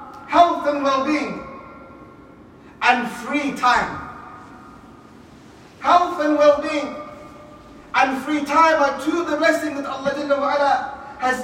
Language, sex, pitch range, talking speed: English, male, 275-310 Hz, 100 wpm